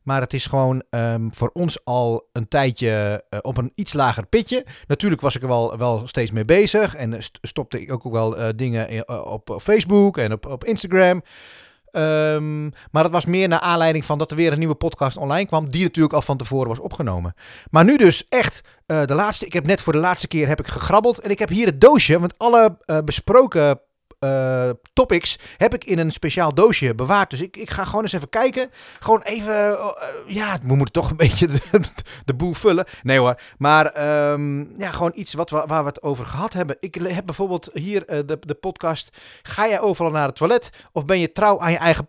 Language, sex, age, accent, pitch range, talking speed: Dutch, male, 30-49, Dutch, 135-195 Hz, 215 wpm